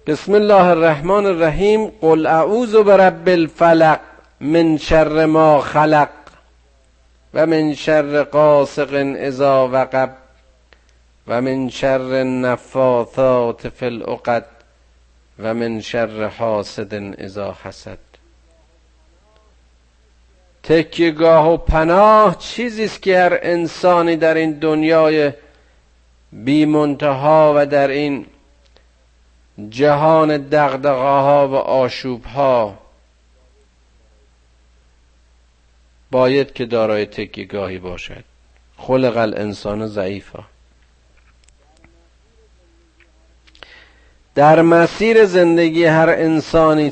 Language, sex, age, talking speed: Persian, male, 50-69, 80 wpm